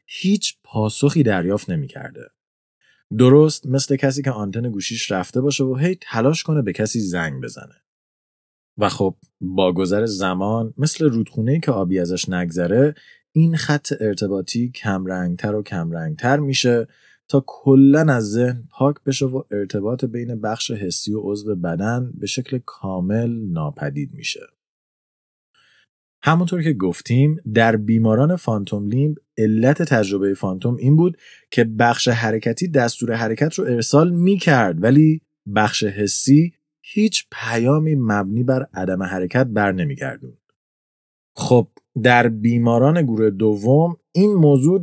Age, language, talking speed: 30-49, Persian, 130 wpm